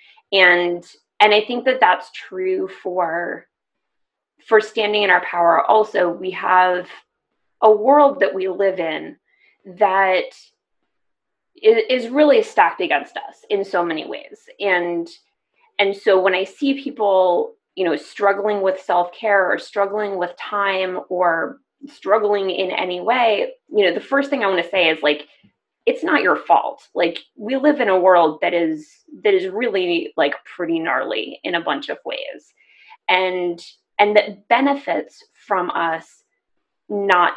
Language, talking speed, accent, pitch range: English, 150 wpm, American, 180-295 Hz